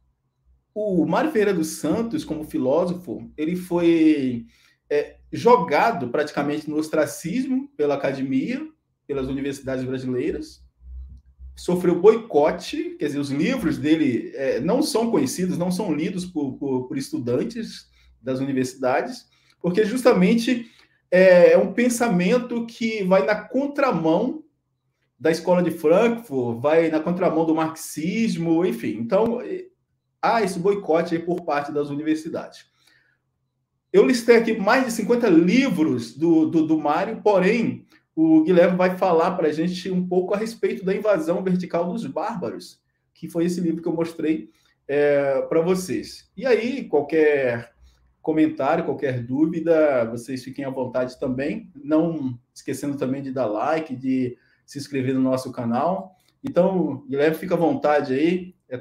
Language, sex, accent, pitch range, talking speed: Portuguese, male, Brazilian, 135-205 Hz, 140 wpm